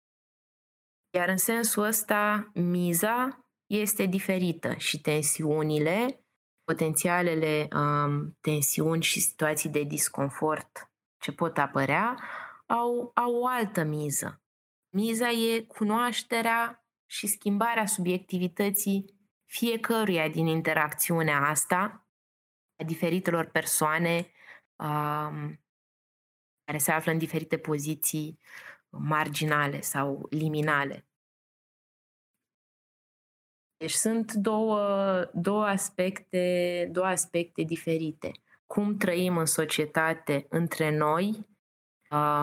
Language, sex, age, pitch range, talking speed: Romanian, female, 20-39, 155-200 Hz, 80 wpm